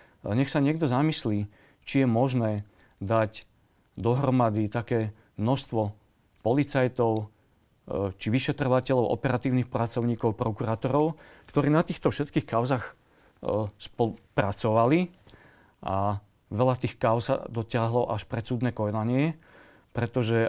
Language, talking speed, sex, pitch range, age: Slovak, 100 wpm, male, 105-130 Hz, 40-59